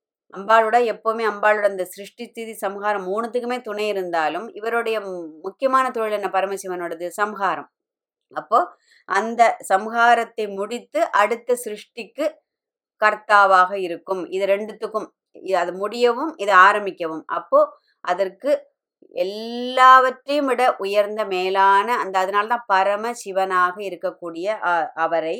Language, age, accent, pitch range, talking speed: Tamil, 20-39, native, 185-235 Hz, 95 wpm